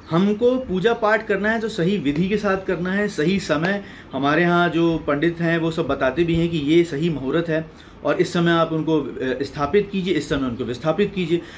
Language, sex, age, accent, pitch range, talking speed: Hindi, male, 30-49, native, 160-215 Hz, 215 wpm